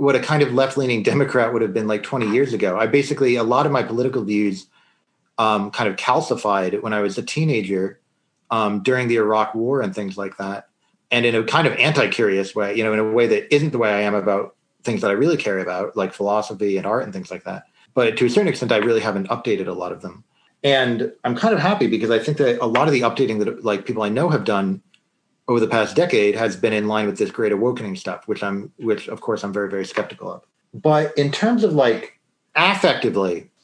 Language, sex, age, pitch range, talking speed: English, male, 30-49, 100-125 Hz, 240 wpm